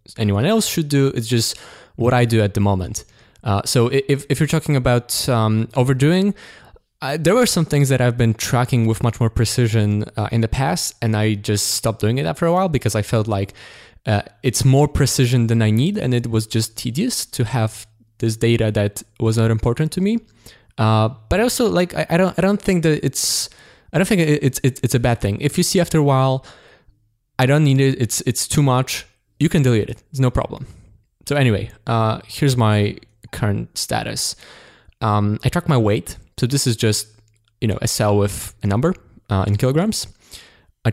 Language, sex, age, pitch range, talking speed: English, male, 20-39, 110-140 Hz, 210 wpm